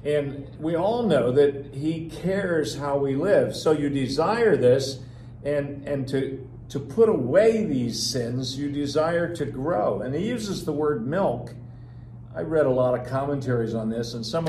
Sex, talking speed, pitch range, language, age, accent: male, 175 wpm, 120-155 Hz, English, 50-69, American